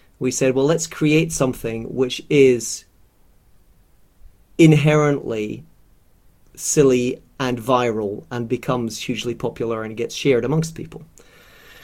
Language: English